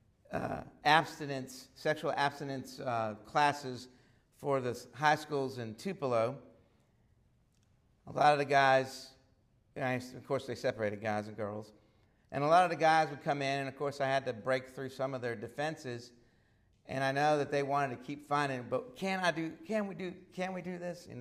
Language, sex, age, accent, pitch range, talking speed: English, male, 50-69, American, 130-200 Hz, 185 wpm